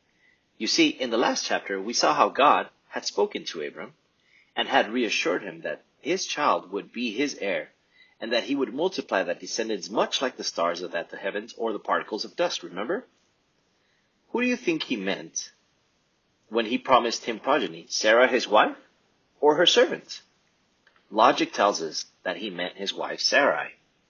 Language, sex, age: English, male, 30-49